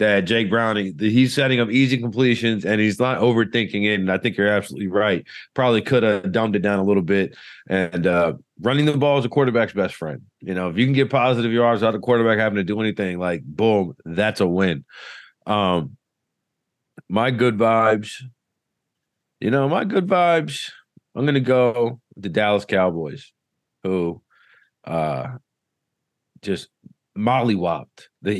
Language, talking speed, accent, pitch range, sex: English, 170 wpm, American, 95-120 Hz, male